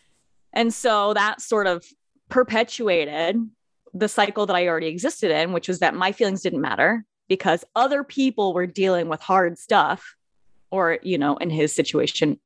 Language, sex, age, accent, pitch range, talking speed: English, female, 20-39, American, 170-240 Hz, 165 wpm